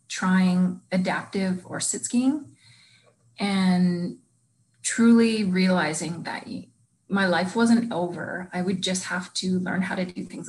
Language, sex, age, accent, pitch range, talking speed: English, female, 30-49, American, 180-210 Hz, 130 wpm